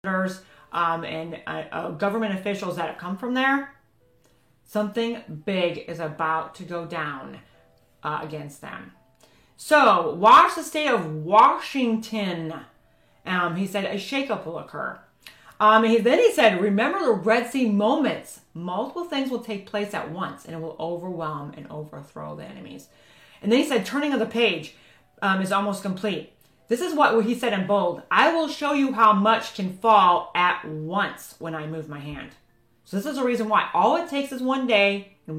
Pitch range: 170-235 Hz